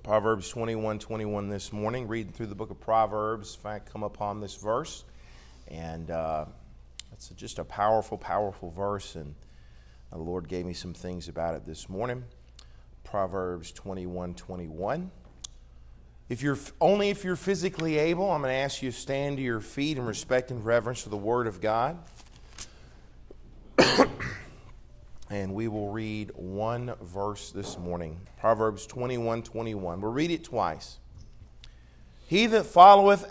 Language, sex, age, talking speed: English, male, 40-59, 150 wpm